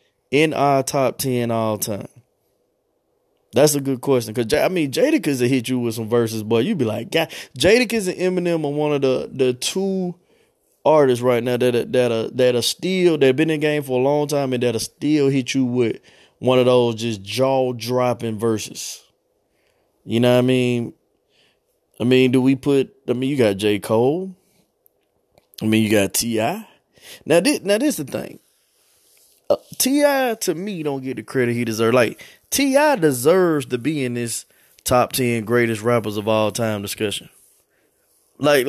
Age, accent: 20-39, American